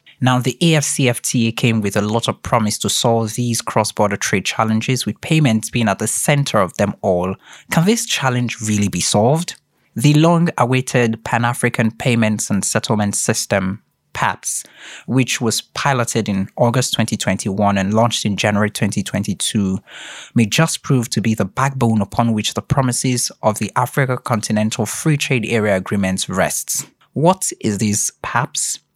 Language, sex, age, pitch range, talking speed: English, male, 20-39, 105-130 Hz, 150 wpm